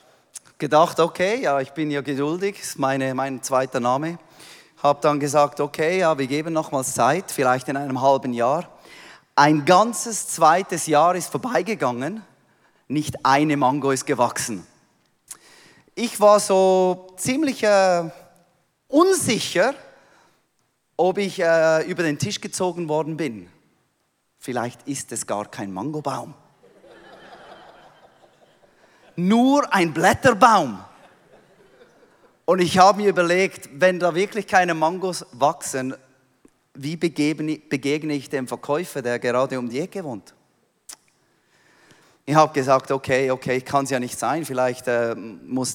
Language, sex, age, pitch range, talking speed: German, male, 30-49, 135-175 Hz, 125 wpm